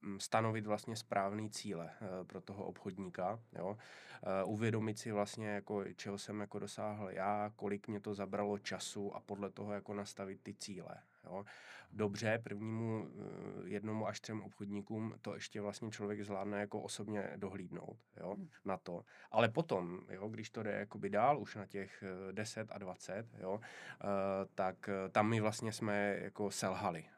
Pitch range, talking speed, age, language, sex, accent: 100-105 Hz, 155 wpm, 20-39, Czech, male, native